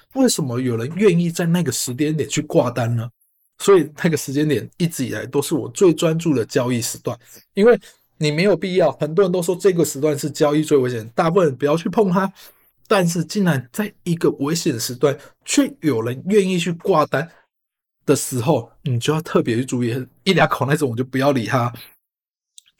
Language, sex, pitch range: Chinese, male, 140-185 Hz